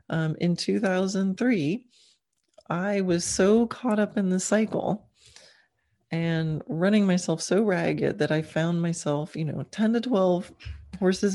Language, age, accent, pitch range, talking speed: English, 30-49, American, 150-190 Hz, 135 wpm